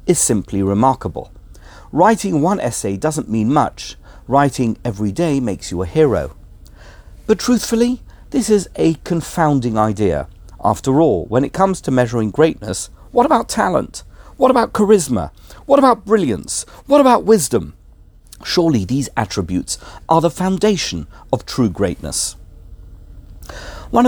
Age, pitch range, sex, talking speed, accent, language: 50-69, 95-155 Hz, male, 130 wpm, British, English